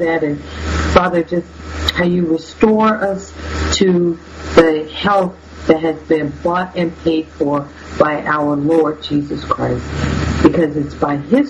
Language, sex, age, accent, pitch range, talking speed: English, female, 50-69, American, 145-180 Hz, 140 wpm